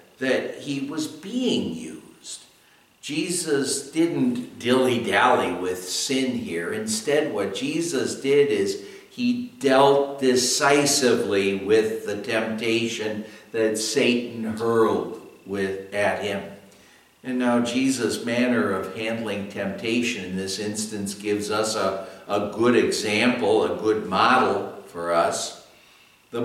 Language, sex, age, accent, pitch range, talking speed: English, male, 60-79, American, 110-145 Hz, 115 wpm